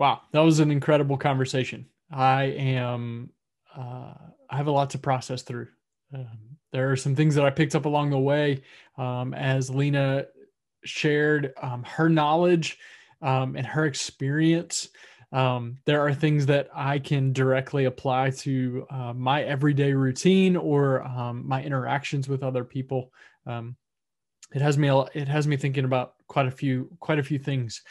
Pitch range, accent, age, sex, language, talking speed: 130-150 Hz, American, 20-39, male, English, 165 wpm